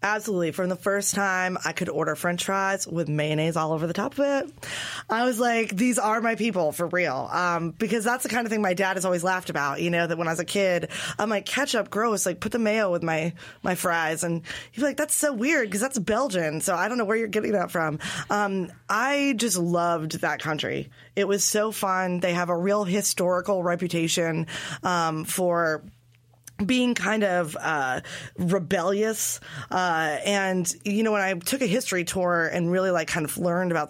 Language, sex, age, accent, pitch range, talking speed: English, female, 20-39, American, 170-210 Hz, 210 wpm